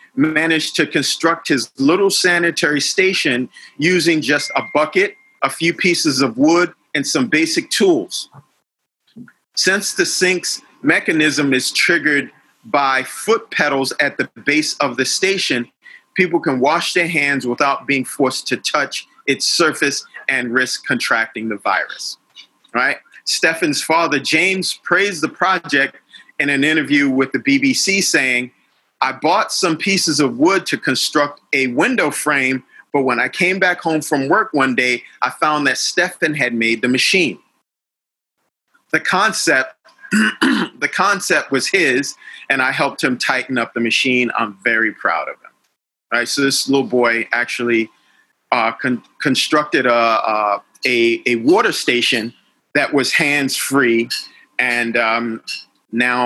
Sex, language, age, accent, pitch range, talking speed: male, English, 40-59, American, 125-180 Hz, 140 wpm